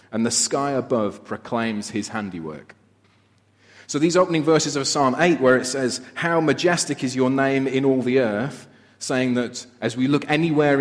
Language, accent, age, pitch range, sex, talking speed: English, British, 30-49, 115-140 Hz, male, 180 wpm